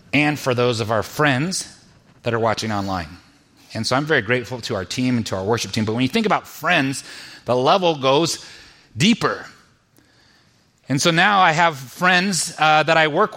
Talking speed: 195 wpm